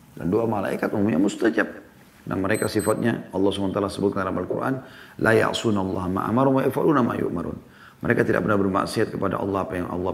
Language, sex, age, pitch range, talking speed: Indonesian, male, 40-59, 85-105 Hz, 180 wpm